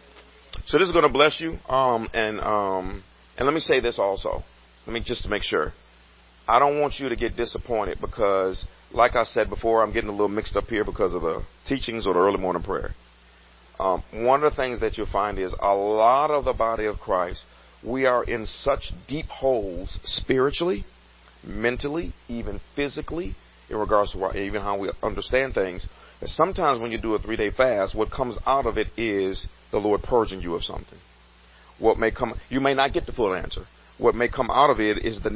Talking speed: 210 wpm